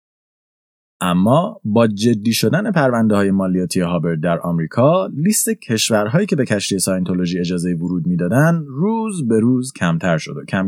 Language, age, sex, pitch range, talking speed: Persian, 20-39, male, 100-145 Hz, 150 wpm